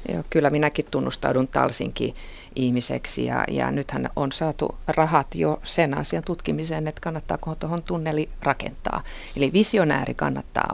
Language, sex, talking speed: Finnish, female, 125 wpm